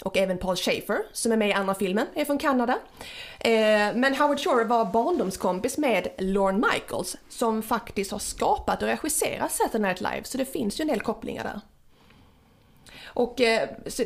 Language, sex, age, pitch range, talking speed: Swedish, female, 30-49, 195-255 Hz, 170 wpm